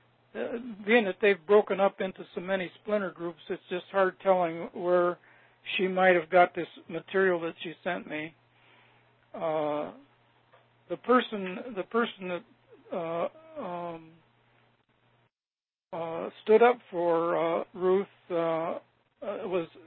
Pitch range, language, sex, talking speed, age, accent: 170-205 Hz, English, male, 130 wpm, 60-79, American